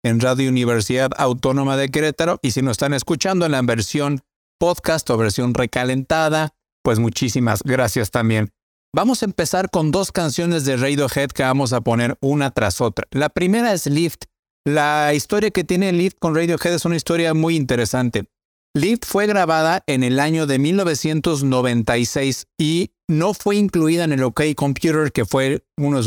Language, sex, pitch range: Spanish, male, 130-165 Hz